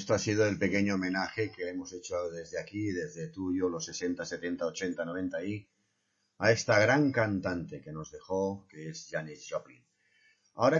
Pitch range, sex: 90-115 Hz, male